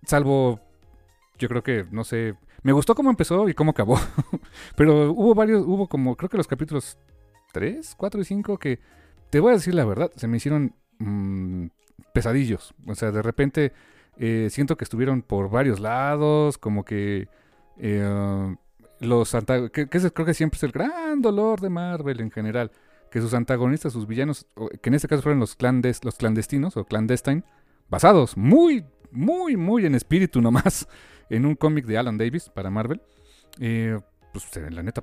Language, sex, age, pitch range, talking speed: Spanish, male, 40-59, 110-150 Hz, 175 wpm